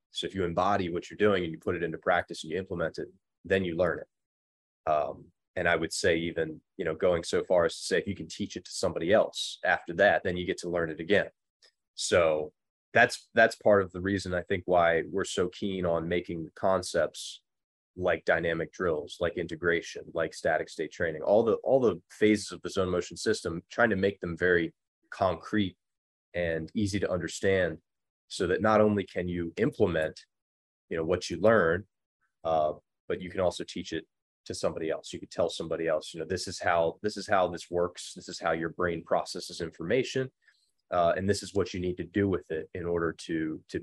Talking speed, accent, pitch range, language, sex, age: 215 wpm, American, 85-100 Hz, English, male, 20-39